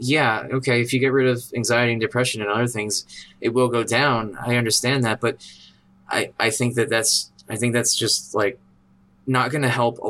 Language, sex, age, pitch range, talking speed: English, male, 20-39, 105-130 Hz, 215 wpm